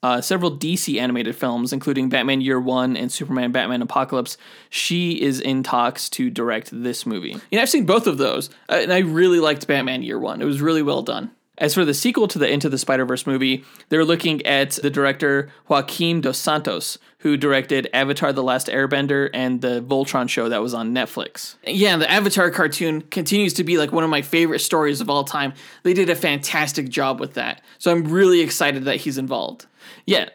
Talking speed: 200 wpm